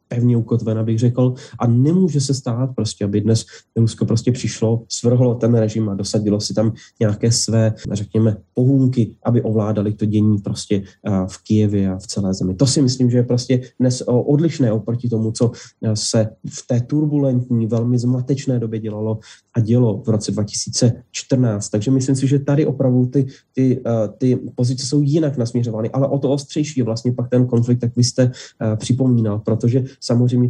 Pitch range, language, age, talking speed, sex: 110-130 Hz, Slovak, 20-39, 170 wpm, male